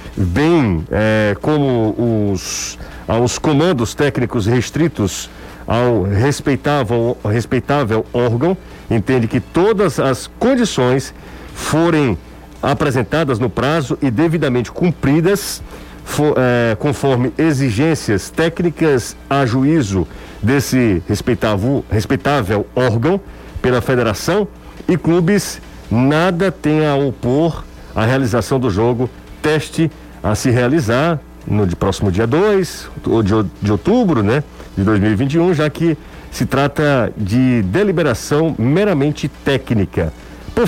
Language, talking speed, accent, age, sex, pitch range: Portuguese, 100 wpm, Brazilian, 50-69, male, 110-155 Hz